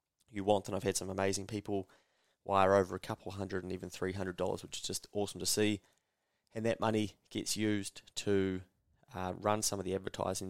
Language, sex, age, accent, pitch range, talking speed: English, male, 20-39, Australian, 95-105 Hz, 200 wpm